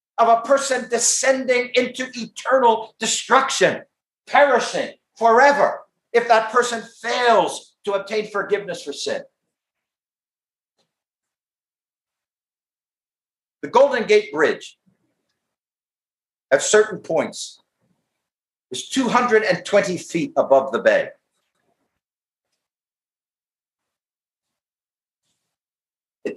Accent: American